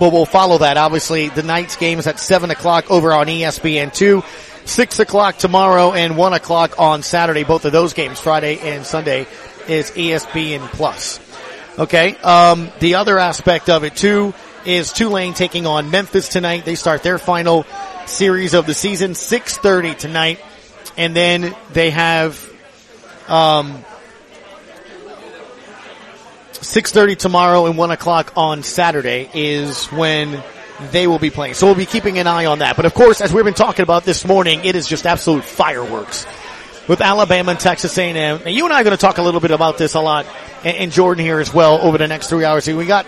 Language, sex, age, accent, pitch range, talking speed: English, male, 30-49, American, 155-185 Hz, 180 wpm